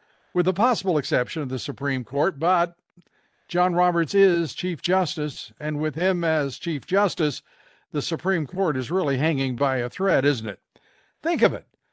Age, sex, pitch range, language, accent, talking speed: 60-79, male, 145-190 Hz, English, American, 170 wpm